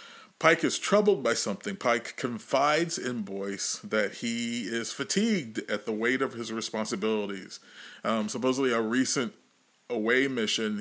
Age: 40-59